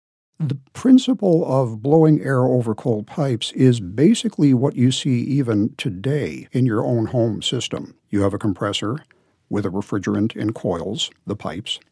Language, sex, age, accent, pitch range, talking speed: English, male, 60-79, American, 105-140 Hz, 155 wpm